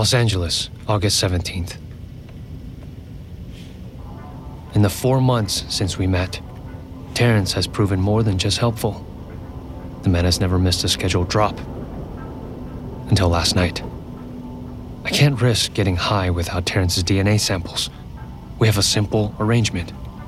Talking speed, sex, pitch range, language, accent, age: 125 wpm, male, 90-115 Hz, English, American, 30-49